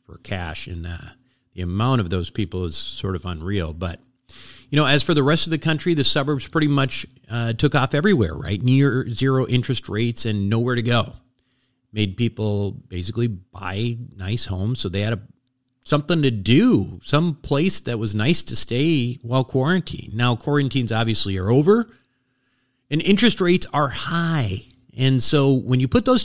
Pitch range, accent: 115-155 Hz, American